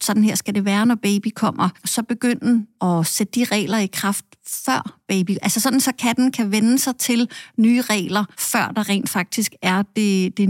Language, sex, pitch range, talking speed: Danish, female, 200-230 Hz, 205 wpm